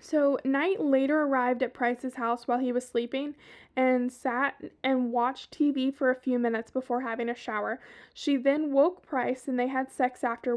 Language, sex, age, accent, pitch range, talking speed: English, female, 10-29, American, 245-285 Hz, 185 wpm